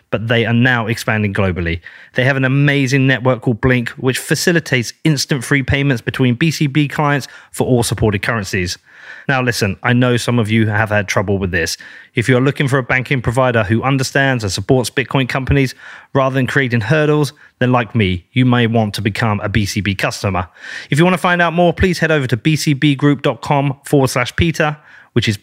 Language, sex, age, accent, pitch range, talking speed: English, male, 30-49, British, 115-145 Hz, 195 wpm